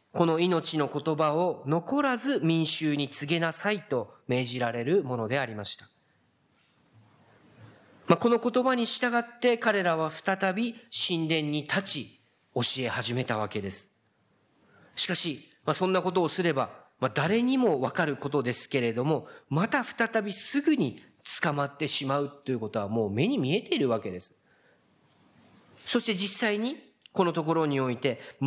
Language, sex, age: Japanese, male, 40-59